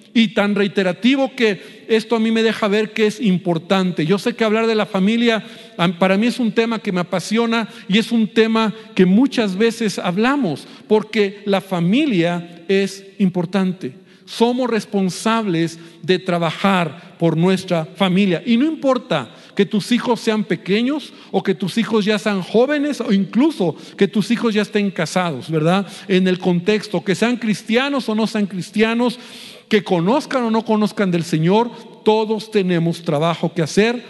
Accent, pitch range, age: Mexican, 180-225 Hz, 50-69